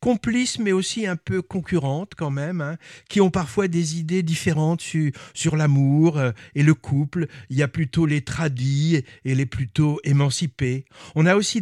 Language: French